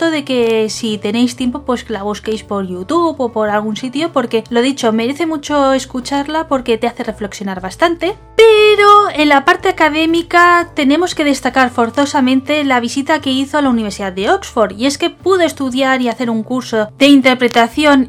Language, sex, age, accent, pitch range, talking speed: Spanish, female, 20-39, Spanish, 235-325 Hz, 180 wpm